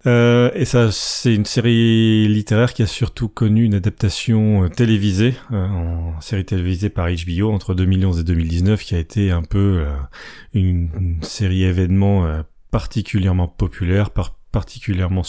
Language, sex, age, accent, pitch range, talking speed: French, male, 30-49, French, 90-110 Hz, 155 wpm